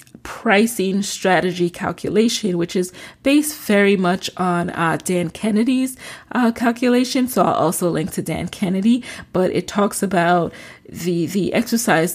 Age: 20-39